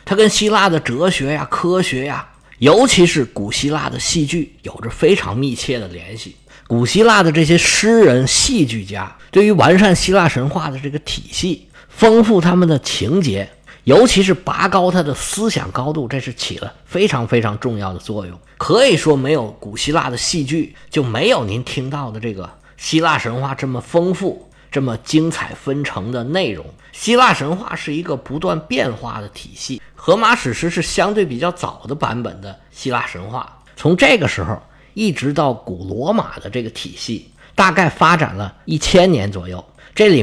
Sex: male